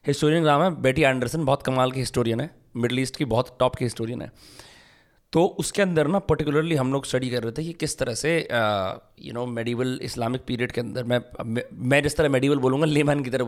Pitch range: 125-150 Hz